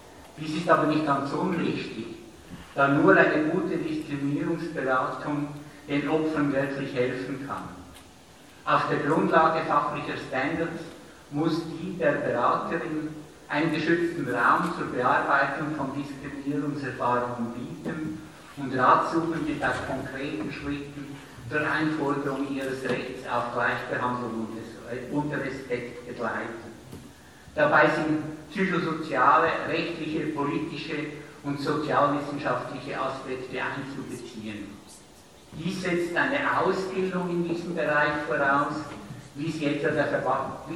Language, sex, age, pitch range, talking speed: German, male, 60-79, 130-155 Hz, 100 wpm